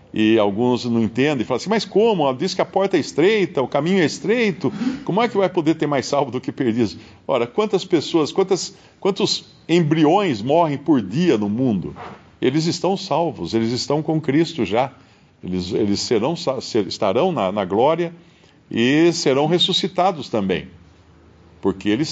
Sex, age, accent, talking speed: male, 50-69, Brazilian, 175 wpm